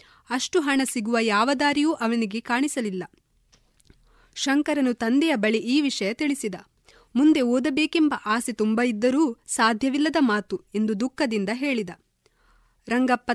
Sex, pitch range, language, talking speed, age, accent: female, 225-275 Hz, Kannada, 110 wpm, 20-39, native